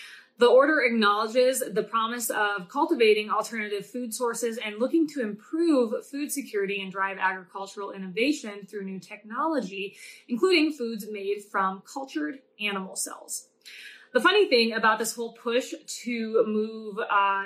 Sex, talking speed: female, 140 wpm